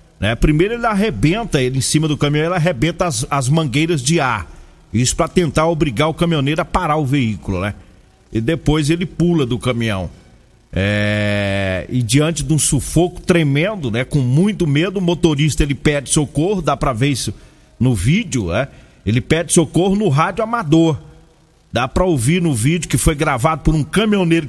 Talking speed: 180 wpm